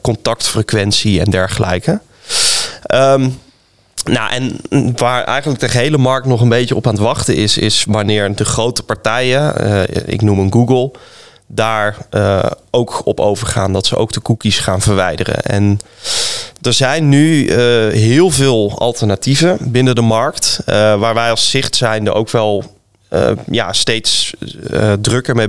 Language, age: Dutch, 20-39